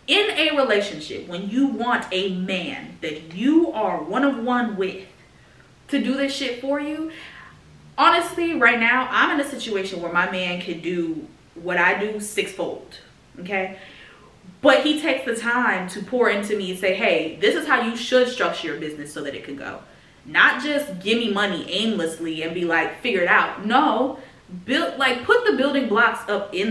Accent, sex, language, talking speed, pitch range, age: American, female, English, 190 wpm, 175-260 Hz, 20-39